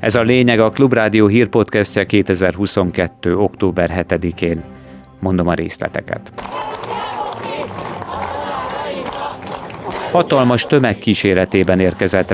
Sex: male